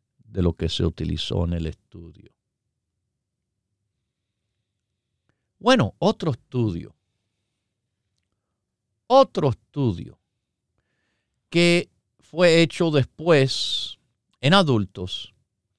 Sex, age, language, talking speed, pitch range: male, 50-69, Spanish, 70 wpm, 105-145 Hz